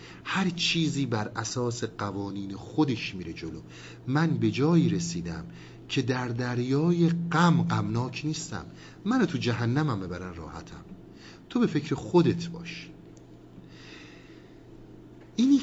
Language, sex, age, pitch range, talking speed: Persian, male, 50-69, 95-140 Hz, 115 wpm